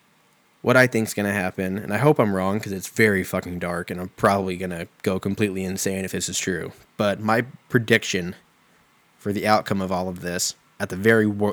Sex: male